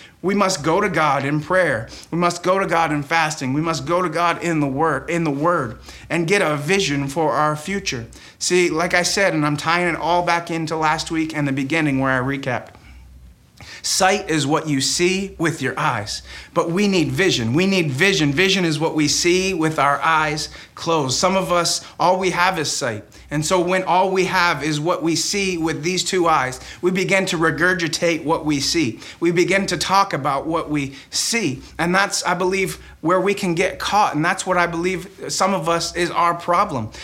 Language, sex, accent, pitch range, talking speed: English, male, American, 150-185 Hz, 215 wpm